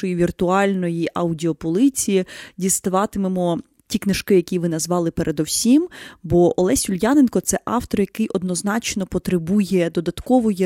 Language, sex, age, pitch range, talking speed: Ukrainian, female, 20-39, 180-235 Hz, 105 wpm